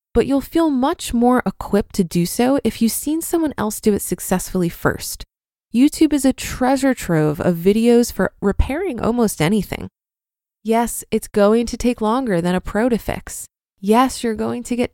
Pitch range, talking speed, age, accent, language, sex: 200-255 Hz, 180 wpm, 20-39, American, English, female